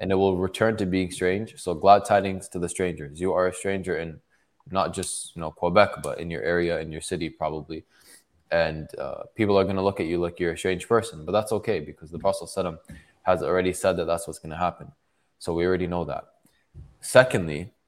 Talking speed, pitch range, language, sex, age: 220 wpm, 85-100 Hz, English, male, 20-39